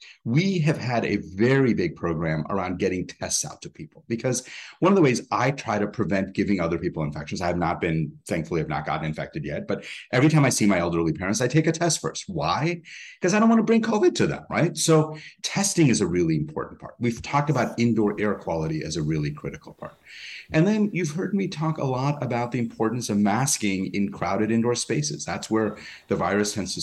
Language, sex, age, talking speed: English, male, 30-49, 225 wpm